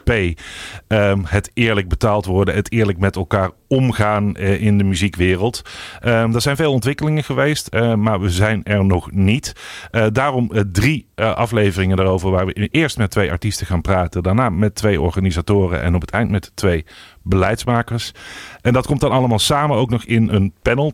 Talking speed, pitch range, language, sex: 165 wpm, 90-115 Hz, English, male